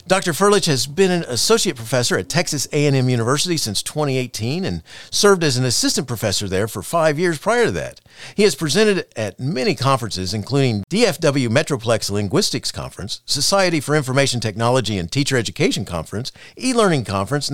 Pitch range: 115-165 Hz